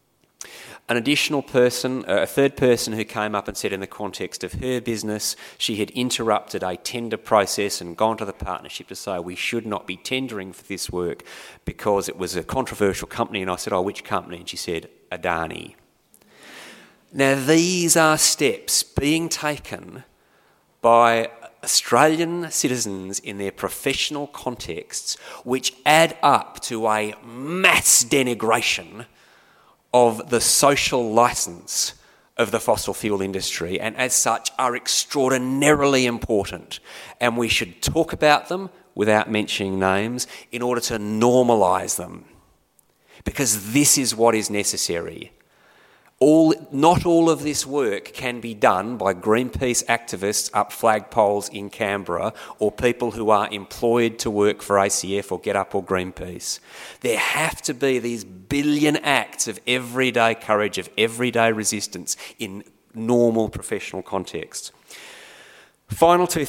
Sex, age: male, 30-49